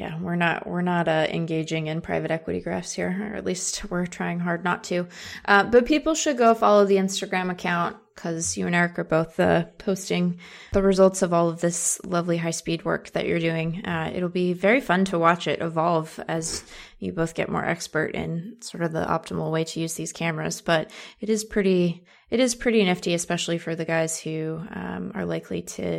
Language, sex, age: English, female, 20-39